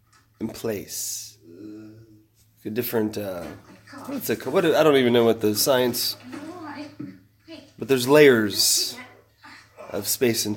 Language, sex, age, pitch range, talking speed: English, male, 30-49, 105-130 Hz, 130 wpm